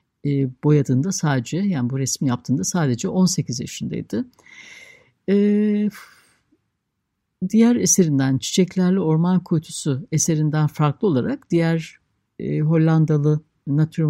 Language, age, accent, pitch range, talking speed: Turkish, 60-79, native, 140-175 Hz, 100 wpm